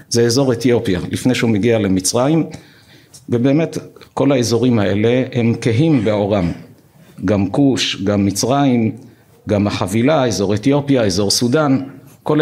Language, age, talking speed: Hebrew, 50-69, 120 wpm